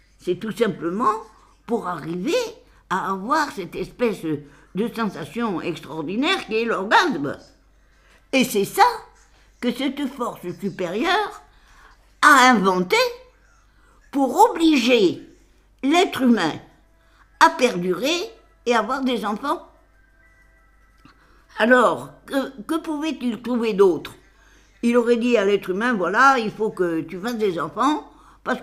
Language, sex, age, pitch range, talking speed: French, female, 60-79, 180-280 Hz, 115 wpm